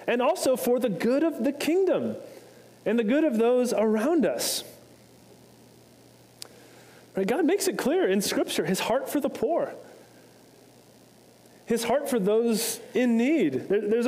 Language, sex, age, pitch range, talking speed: English, male, 30-49, 180-255 Hz, 140 wpm